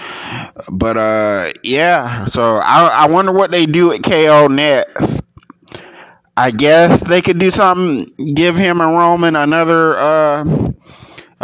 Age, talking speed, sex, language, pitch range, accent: 30-49, 130 wpm, male, English, 110-155 Hz, American